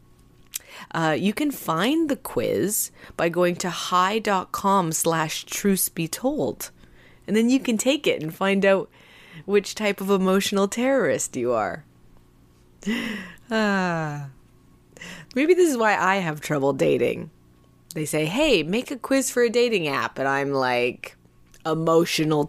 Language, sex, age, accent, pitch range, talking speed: English, female, 20-39, American, 160-230 Hz, 140 wpm